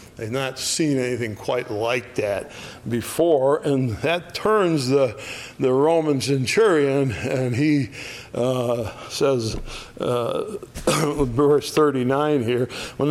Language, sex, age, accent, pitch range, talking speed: English, male, 60-79, American, 125-165 Hz, 110 wpm